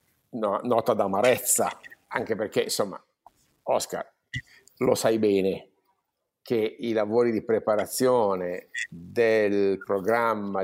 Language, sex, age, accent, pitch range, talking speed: Italian, male, 50-69, native, 100-115 Hz, 95 wpm